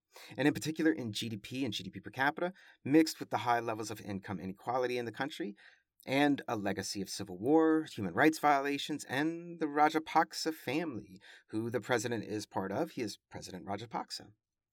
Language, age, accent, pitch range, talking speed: English, 40-59, American, 105-155 Hz, 175 wpm